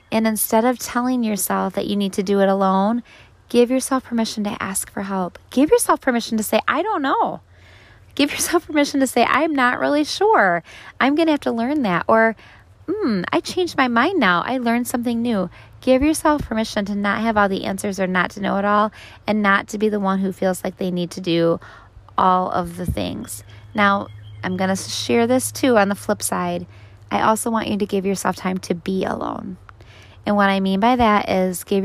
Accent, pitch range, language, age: American, 190-235 Hz, English, 20-39